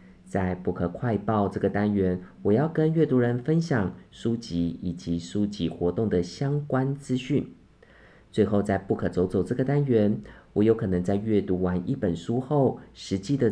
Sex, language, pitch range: male, Chinese, 90-115 Hz